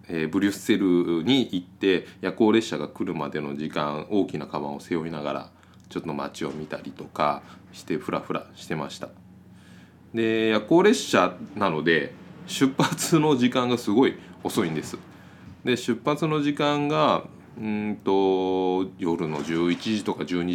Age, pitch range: 20-39, 80-105 Hz